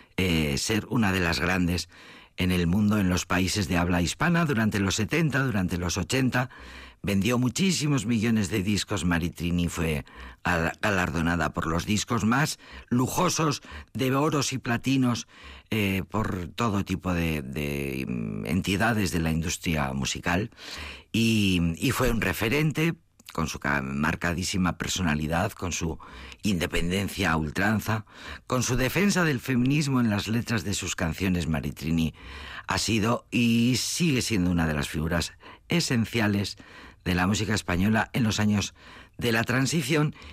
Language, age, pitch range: Spanish, 50-69, 85-115 Hz